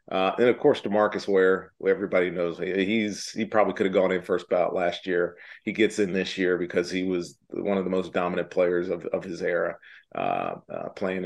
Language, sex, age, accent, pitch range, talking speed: English, male, 40-59, American, 90-105 Hz, 215 wpm